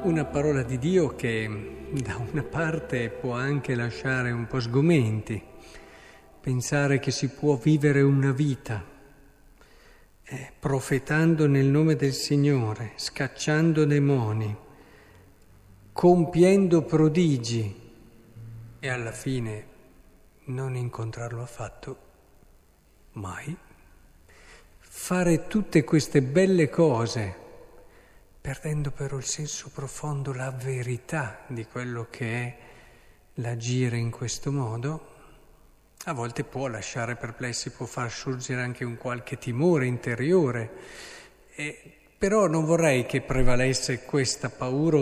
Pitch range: 120-155 Hz